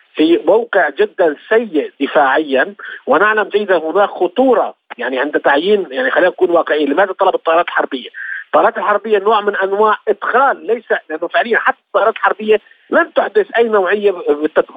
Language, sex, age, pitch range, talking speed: Arabic, male, 50-69, 180-255 Hz, 155 wpm